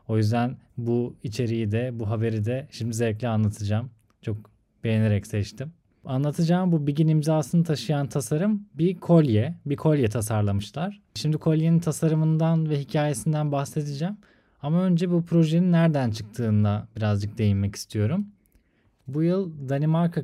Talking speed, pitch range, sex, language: 130 wpm, 110-160 Hz, male, Turkish